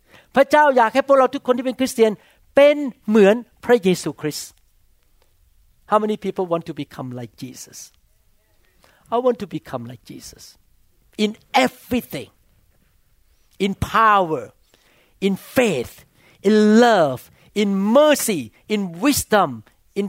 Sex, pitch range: male, 140-215 Hz